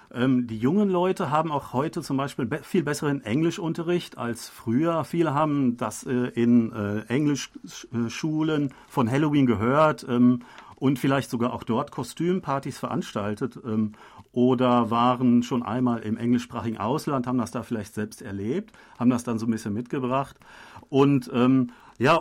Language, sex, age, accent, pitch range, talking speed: German, male, 40-59, German, 120-150 Hz, 140 wpm